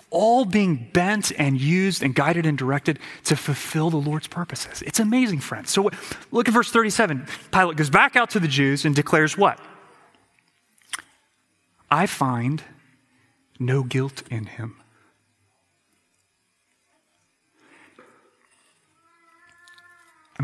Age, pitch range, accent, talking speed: 30-49, 135-195 Hz, American, 115 wpm